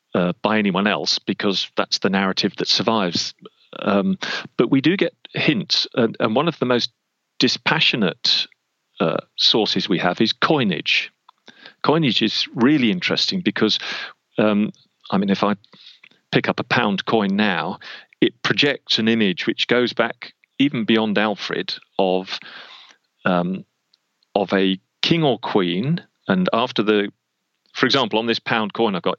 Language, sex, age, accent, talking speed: English, male, 40-59, British, 150 wpm